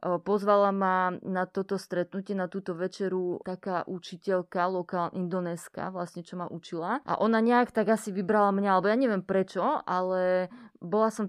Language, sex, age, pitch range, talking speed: Slovak, female, 20-39, 175-195 Hz, 160 wpm